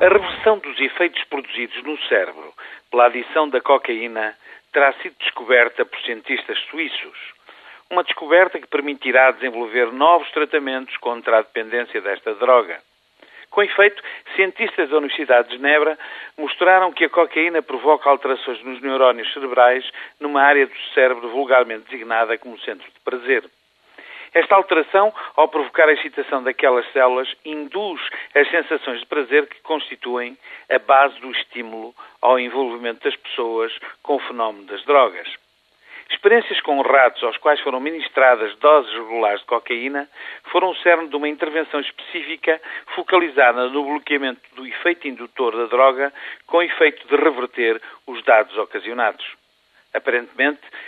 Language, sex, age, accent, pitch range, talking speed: Portuguese, male, 50-69, Portuguese, 125-170 Hz, 140 wpm